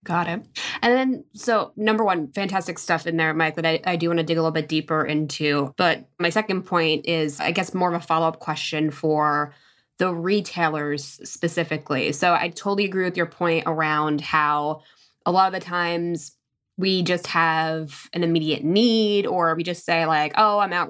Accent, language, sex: American, English, female